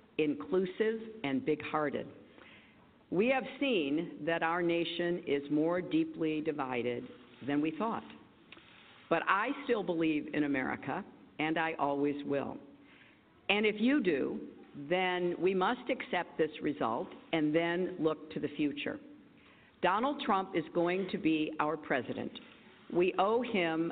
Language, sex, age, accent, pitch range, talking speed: English, female, 50-69, American, 150-225 Hz, 135 wpm